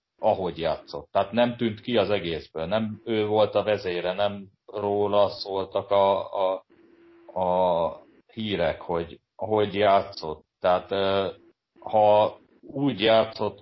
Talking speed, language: 120 wpm, Hungarian